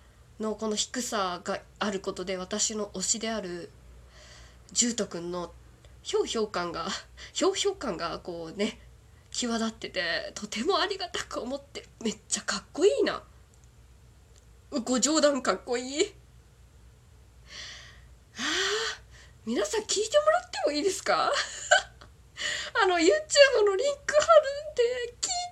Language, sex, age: Japanese, female, 20-39